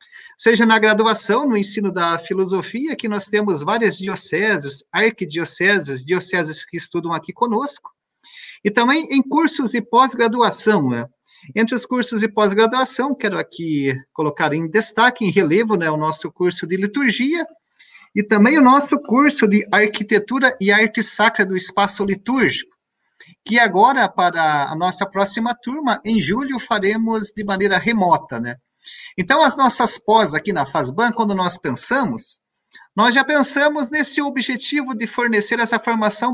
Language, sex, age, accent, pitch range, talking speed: Portuguese, male, 40-59, Brazilian, 190-245 Hz, 145 wpm